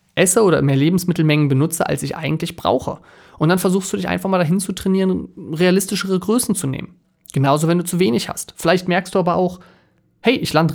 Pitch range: 135-180 Hz